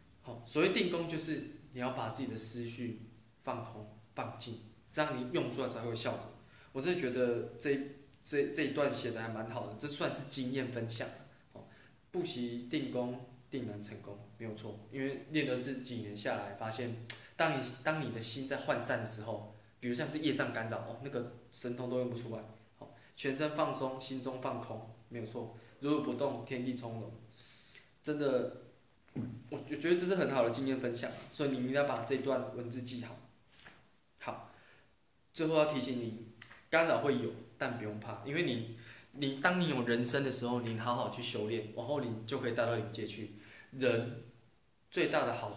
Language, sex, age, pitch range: Chinese, male, 20-39, 115-135 Hz